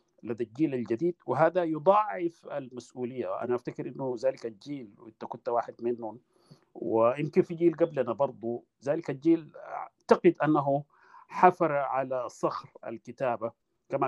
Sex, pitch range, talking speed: male, 115-170 Hz, 125 wpm